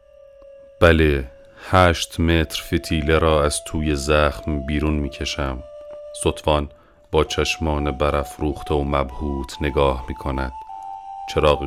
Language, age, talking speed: Persian, 40-59, 100 wpm